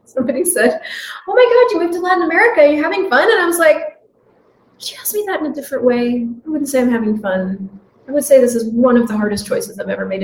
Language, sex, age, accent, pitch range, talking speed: English, female, 30-49, American, 215-315 Hz, 260 wpm